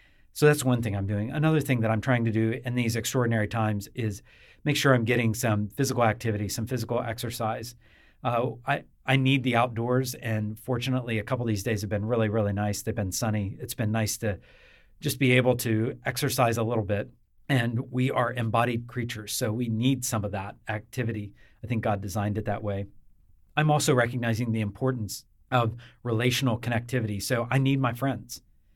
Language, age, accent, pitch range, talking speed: English, 40-59, American, 110-130 Hz, 195 wpm